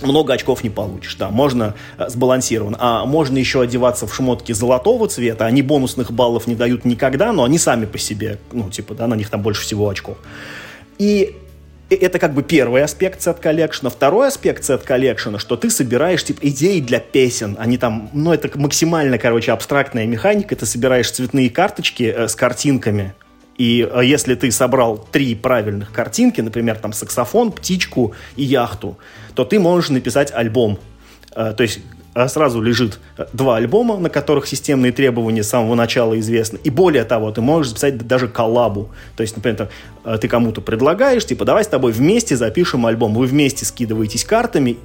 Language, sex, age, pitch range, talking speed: Russian, male, 30-49, 110-140 Hz, 170 wpm